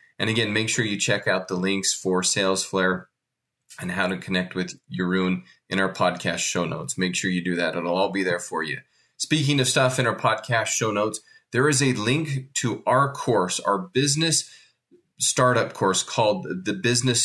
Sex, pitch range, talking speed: male, 100-130 Hz, 190 wpm